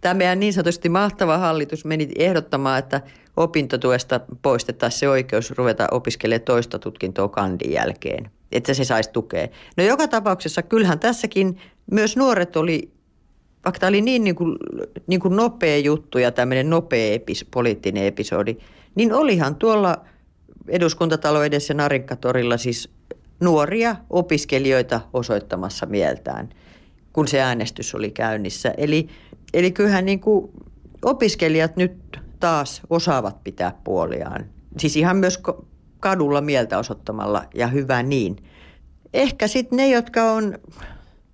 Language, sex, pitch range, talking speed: Finnish, female, 135-185 Hz, 125 wpm